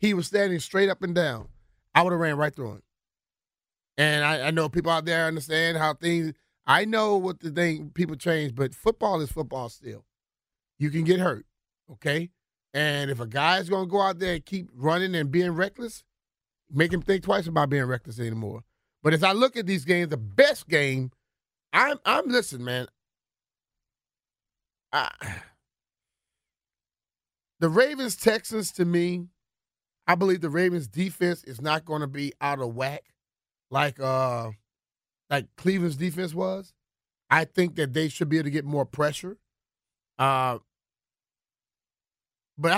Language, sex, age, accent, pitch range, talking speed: English, male, 30-49, American, 130-180 Hz, 160 wpm